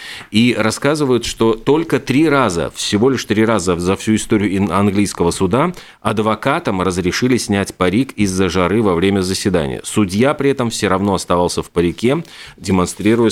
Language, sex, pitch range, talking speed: Russian, male, 95-115 Hz, 150 wpm